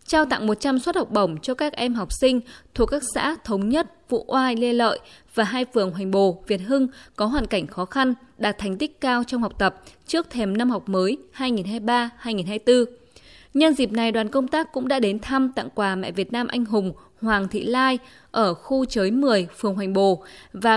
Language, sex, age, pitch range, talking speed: Vietnamese, female, 20-39, 205-260 Hz, 210 wpm